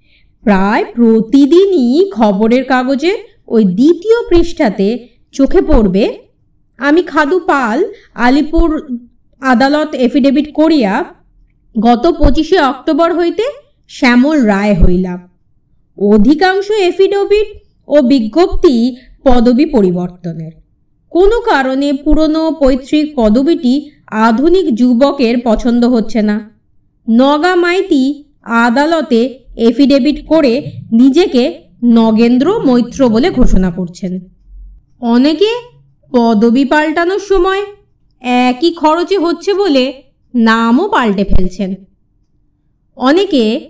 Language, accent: Bengali, native